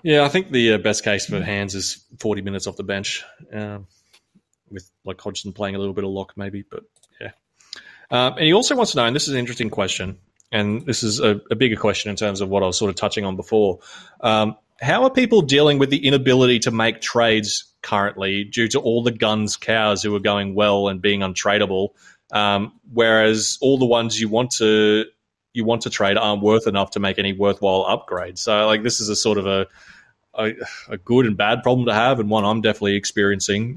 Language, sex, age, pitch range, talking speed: English, male, 20-39, 100-120 Hz, 220 wpm